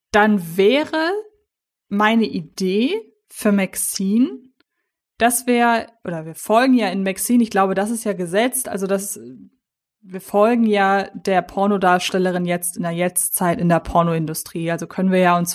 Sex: female